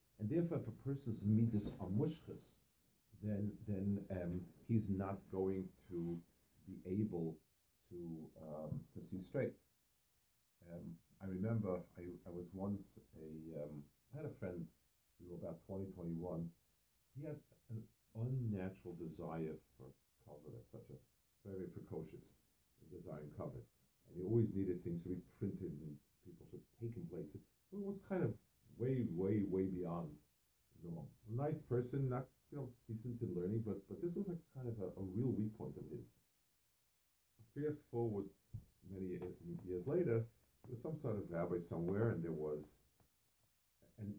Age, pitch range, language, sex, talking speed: 50-69, 85-115 Hz, English, male, 160 wpm